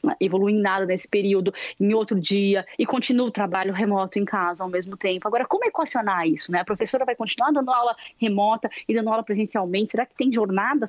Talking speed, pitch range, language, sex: 210 wpm, 175-230 Hz, Portuguese, female